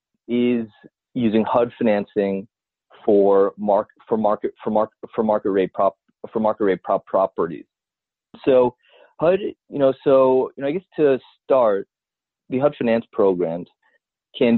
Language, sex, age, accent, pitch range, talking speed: English, male, 30-49, American, 105-125 Hz, 145 wpm